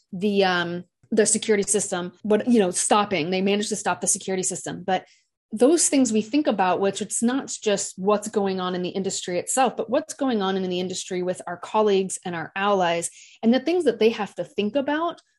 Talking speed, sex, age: 215 wpm, female, 30-49